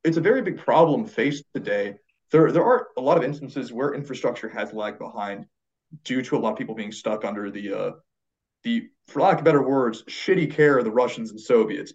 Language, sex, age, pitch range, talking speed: English, male, 20-39, 115-185 Hz, 210 wpm